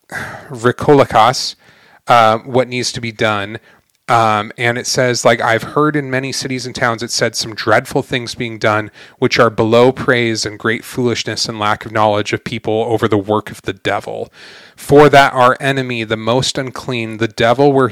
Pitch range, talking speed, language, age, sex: 110-125 Hz, 180 wpm, English, 30-49, male